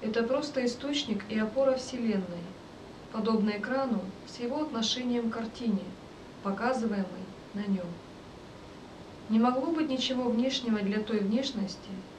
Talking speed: 120 wpm